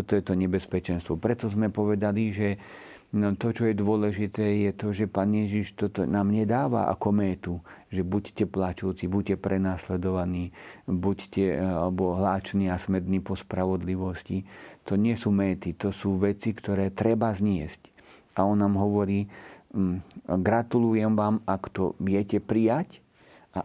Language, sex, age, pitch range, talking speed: Slovak, male, 50-69, 90-105 Hz, 135 wpm